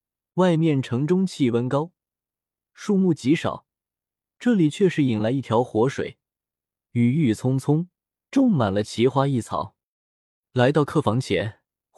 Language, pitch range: Chinese, 110-160 Hz